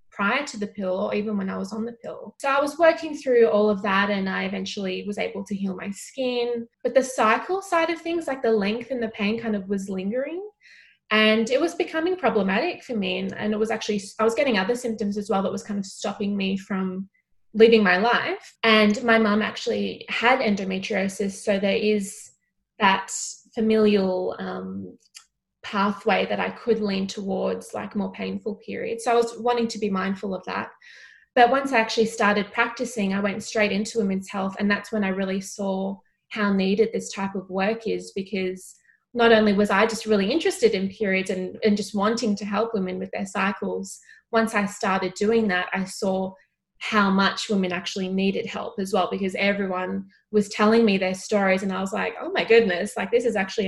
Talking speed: 205 wpm